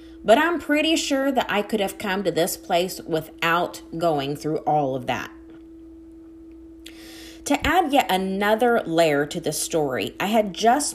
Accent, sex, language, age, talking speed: American, female, English, 30-49, 160 wpm